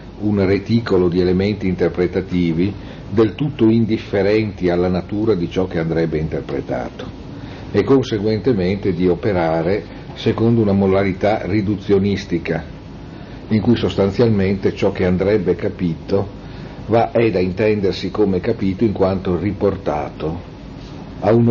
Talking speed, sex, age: 115 wpm, male, 50-69